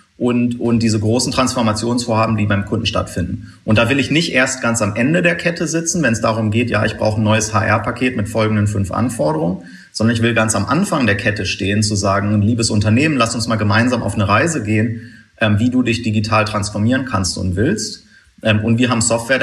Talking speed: 215 wpm